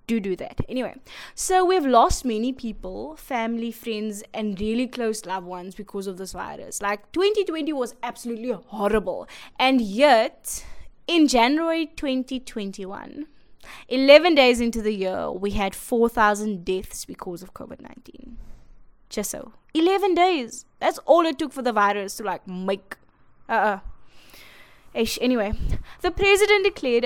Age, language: 20-39, English